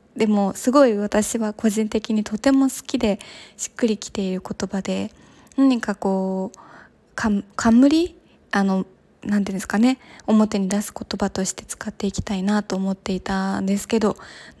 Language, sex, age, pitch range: Japanese, female, 20-39, 200-245 Hz